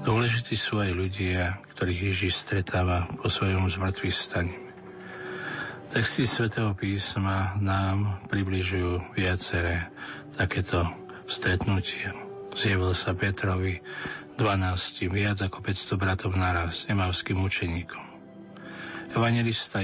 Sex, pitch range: male, 90-105 Hz